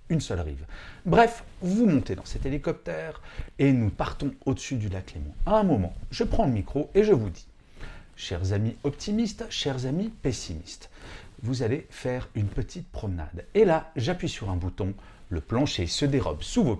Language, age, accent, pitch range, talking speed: French, 40-59, French, 95-140 Hz, 180 wpm